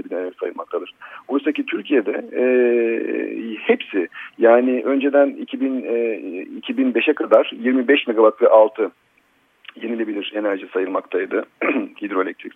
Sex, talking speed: male, 95 wpm